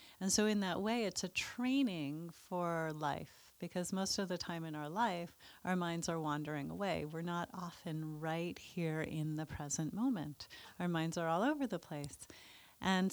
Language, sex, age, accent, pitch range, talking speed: English, female, 30-49, American, 155-185 Hz, 185 wpm